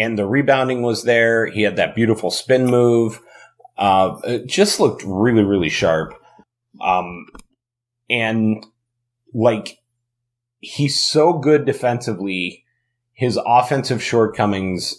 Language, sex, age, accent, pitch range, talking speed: English, male, 30-49, American, 95-120 Hz, 110 wpm